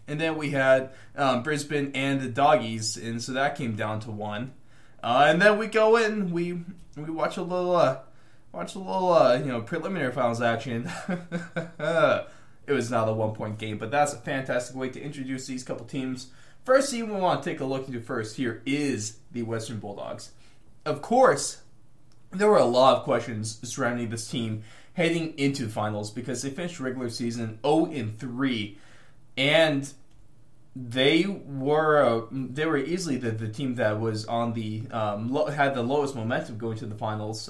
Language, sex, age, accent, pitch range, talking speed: English, male, 20-39, American, 115-155 Hz, 185 wpm